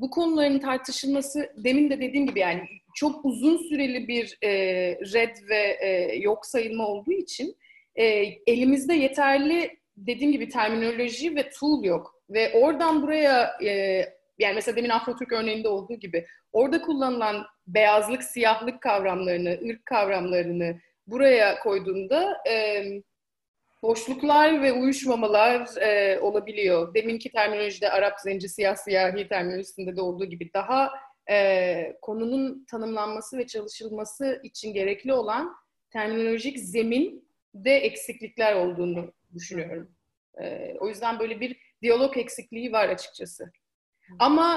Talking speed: 115 wpm